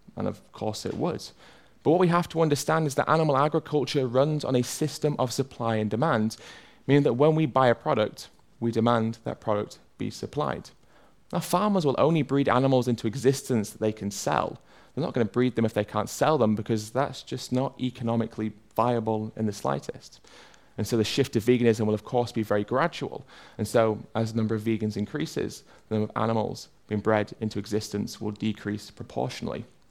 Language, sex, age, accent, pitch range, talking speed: English, male, 30-49, British, 110-130 Hz, 200 wpm